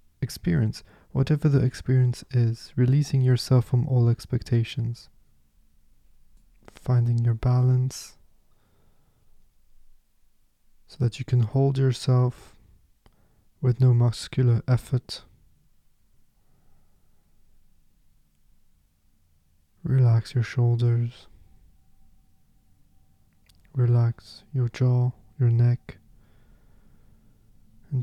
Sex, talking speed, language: male, 70 wpm, English